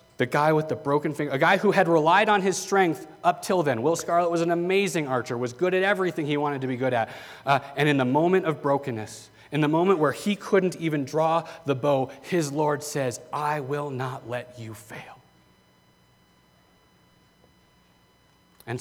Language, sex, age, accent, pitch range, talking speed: English, male, 30-49, American, 120-165 Hz, 190 wpm